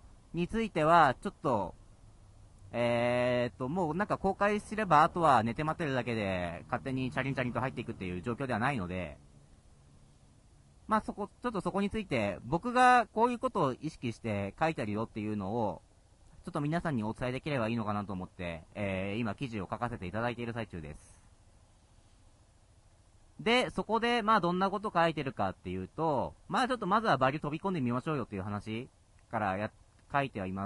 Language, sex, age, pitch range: Japanese, male, 40-59, 95-165 Hz